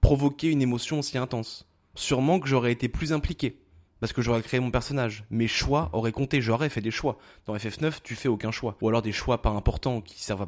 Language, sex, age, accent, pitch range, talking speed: French, male, 20-39, French, 110-135 Hz, 225 wpm